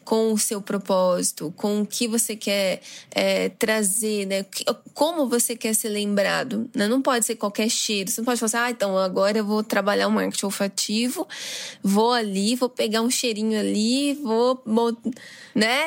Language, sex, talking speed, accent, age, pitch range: Portuguese, female, 180 wpm, Brazilian, 10-29, 205-255 Hz